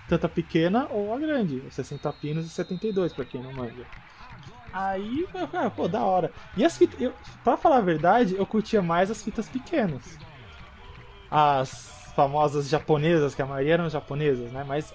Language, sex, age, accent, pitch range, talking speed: Portuguese, male, 20-39, Brazilian, 140-195 Hz, 175 wpm